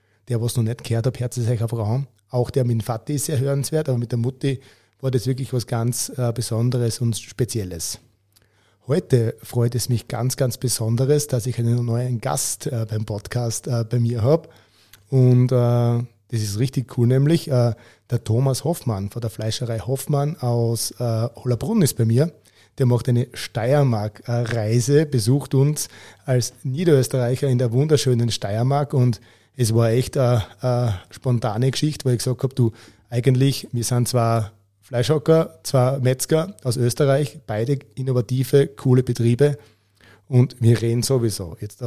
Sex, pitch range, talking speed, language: male, 115-135 Hz, 150 wpm, German